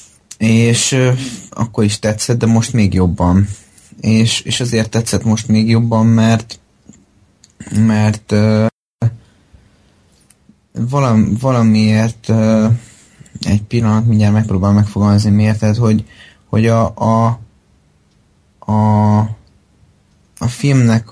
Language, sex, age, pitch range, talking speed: Hungarian, male, 20-39, 105-115 Hz, 95 wpm